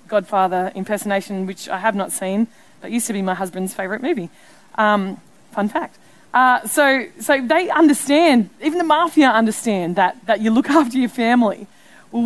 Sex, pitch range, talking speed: female, 225-265 Hz, 170 wpm